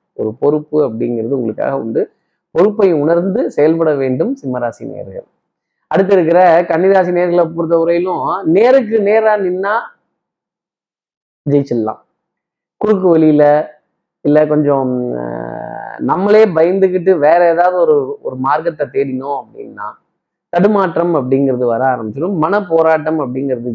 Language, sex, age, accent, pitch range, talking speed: Tamil, male, 20-39, native, 145-190 Hz, 105 wpm